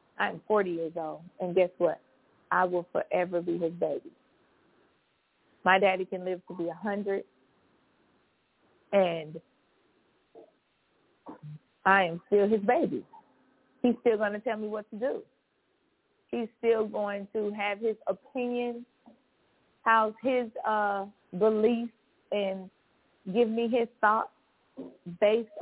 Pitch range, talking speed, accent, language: 190-235 Hz, 120 wpm, American, English